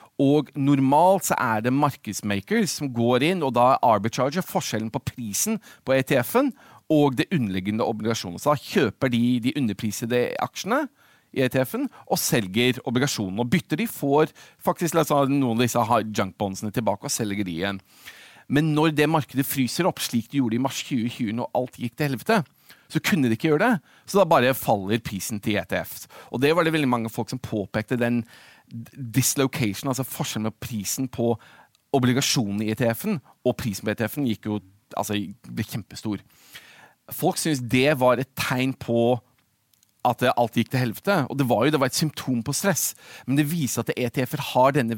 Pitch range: 115-155 Hz